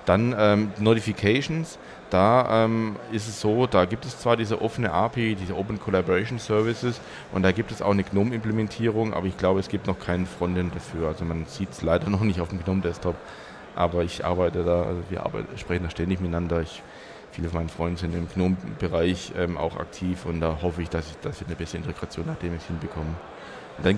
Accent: German